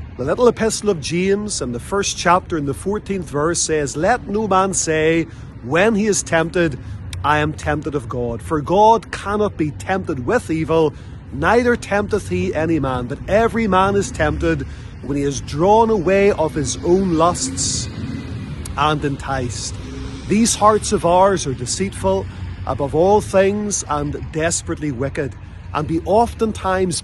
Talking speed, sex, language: 155 wpm, male, English